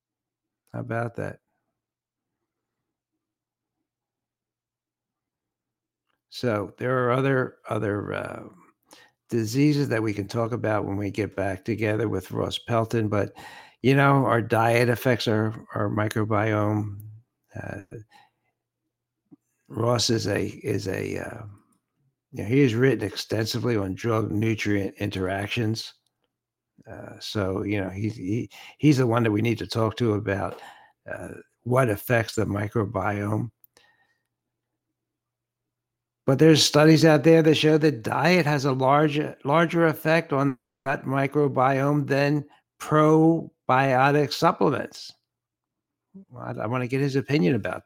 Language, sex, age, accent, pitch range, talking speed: English, male, 60-79, American, 105-140 Hz, 125 wpm